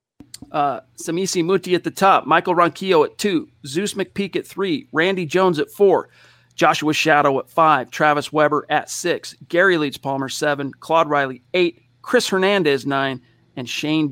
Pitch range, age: 140-165 Hz, 40-59